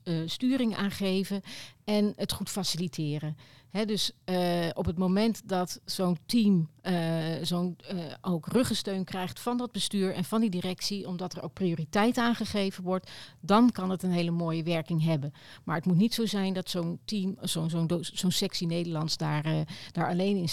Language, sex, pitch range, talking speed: Dutch, female, 160-200 Hz, 165 wpm